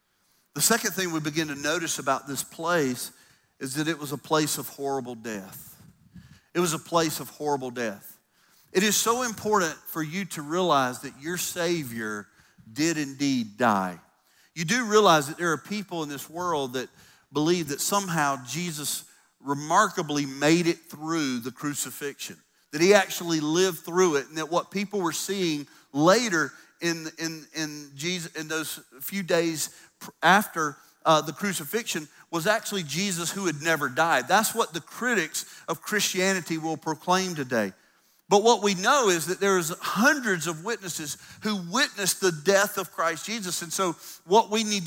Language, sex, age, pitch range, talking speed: English, male, 40-59, 150-195 Hz, 160 wpm